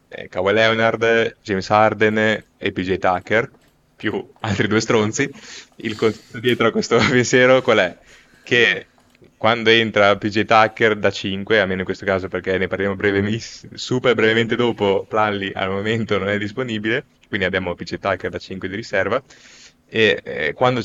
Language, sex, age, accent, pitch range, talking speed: Italian, male, 20-39, native, 95-110 Hz, 160 wpm